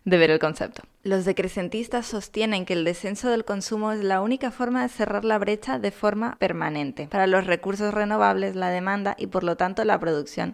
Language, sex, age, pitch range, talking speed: Spanish, female, 20-39, 180-215 Hz, 200 wpm